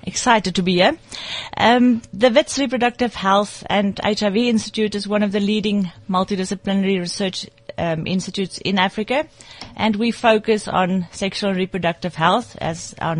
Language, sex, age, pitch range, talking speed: English, female, 30-49, 180-225 Hz, 150 wpm